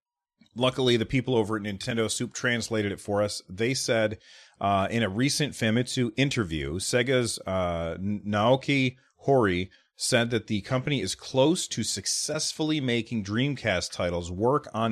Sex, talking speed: male, 145 wpm